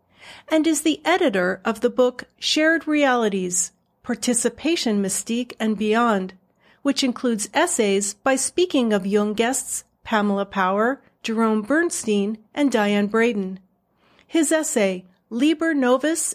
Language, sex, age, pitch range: English, female, 40-59, 205-285 Hz